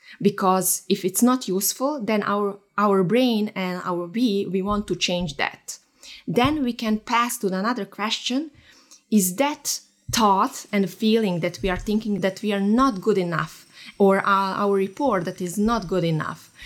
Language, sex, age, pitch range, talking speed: English, female, 20-39, 185-225 Hz, 175 wpm